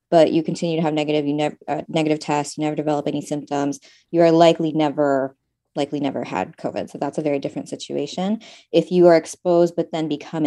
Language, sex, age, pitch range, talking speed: English, female, 20-39, 155-190 Hz, 210 wpm